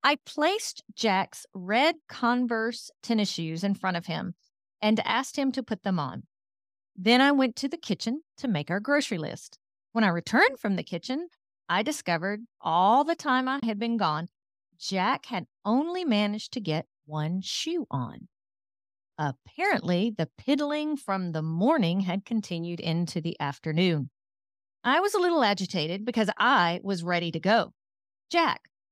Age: 40-59